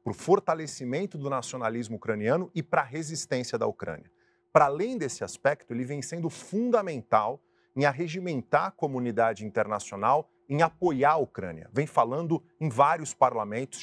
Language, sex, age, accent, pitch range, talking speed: Portuguese, male, 40-59, Brazilian, 120-165 Hz, 150 wpm